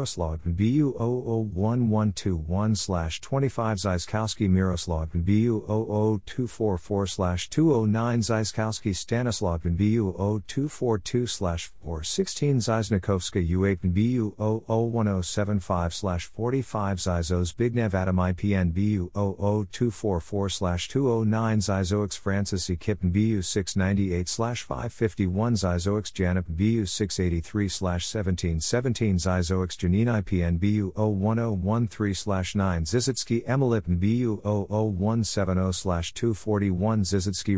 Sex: male